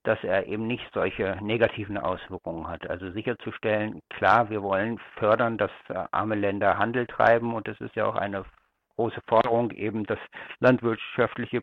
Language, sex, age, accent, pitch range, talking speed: German, male, 60-79, German, 105-120 Hz, 155 wpm